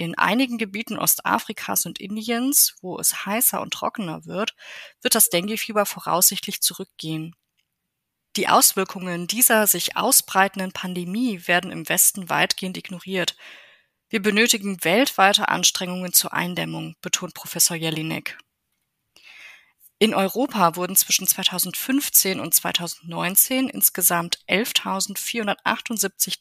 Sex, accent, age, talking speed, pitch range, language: female, German, 30-49, 105 wpm, 175-225 Hz, German